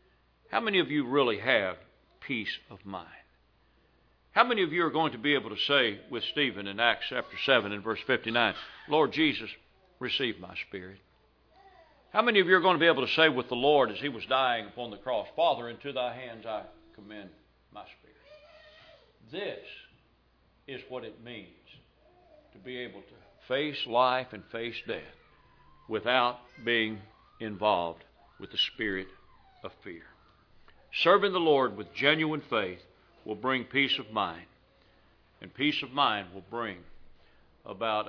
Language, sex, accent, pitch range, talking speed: English, male, American, 110-160 Hz, 160 wpm